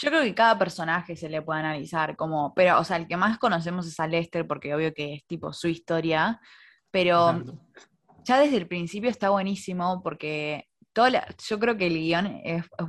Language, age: Spanish, 20-39